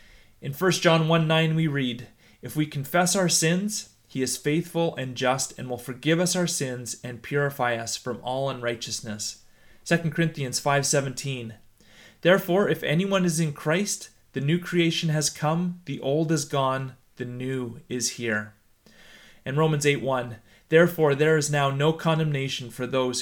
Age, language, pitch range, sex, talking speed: 30-49, English, 120-165 Hz, male, 160 wpm